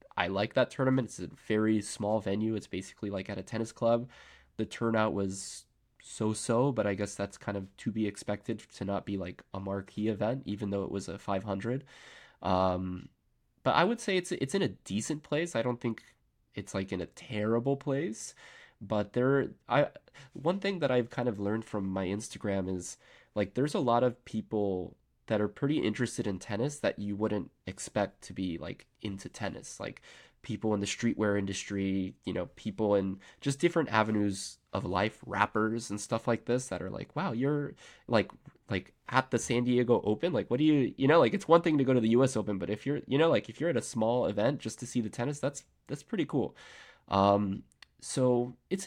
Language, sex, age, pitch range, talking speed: English, male, 20-39, 100-125 Hz, 210 wpm